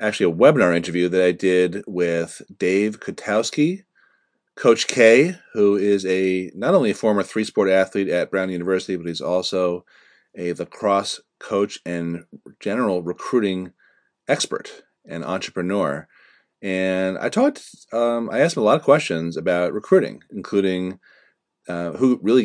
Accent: American